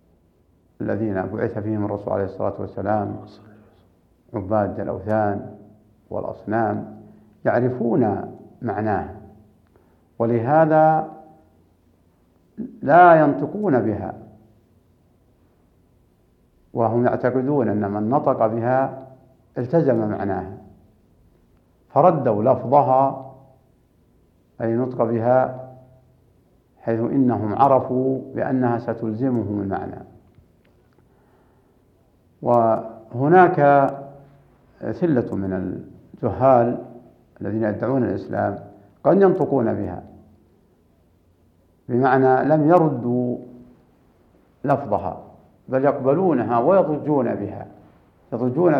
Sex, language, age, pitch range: male, Arabic, 60-79, 100-130 Hz